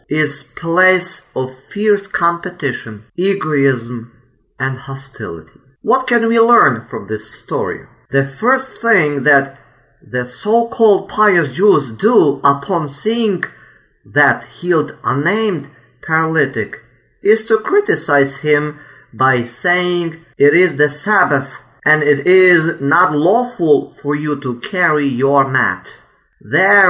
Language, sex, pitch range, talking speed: Ukrainian, male, 135-185 Hz, 115 wpm